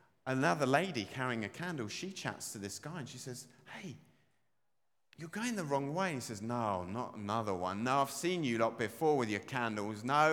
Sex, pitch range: male, 115-175 Hz